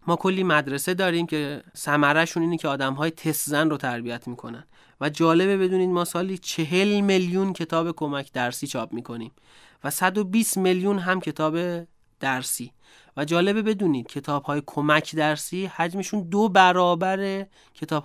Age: 30-49